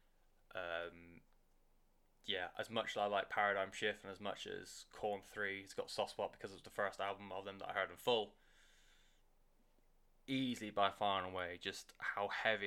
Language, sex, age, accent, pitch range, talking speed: English, male, 20-39, British, 100-135 Hz, 190 wpm